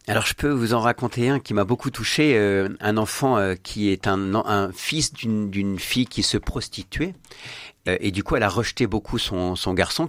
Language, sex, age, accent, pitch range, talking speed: French, male, 50-69, French, 100-135 Hz, 220 wpm